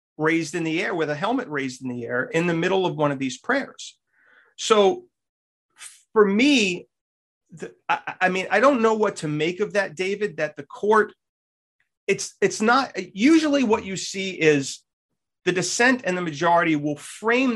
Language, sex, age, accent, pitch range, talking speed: English, male, 40-59, American, 150-200 Hz, 180 wpm